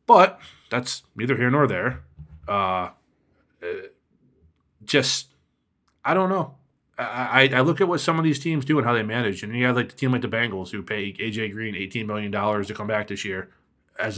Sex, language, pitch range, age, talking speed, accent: male, English, 105-145 Hz, 30-49, 205 wpm, American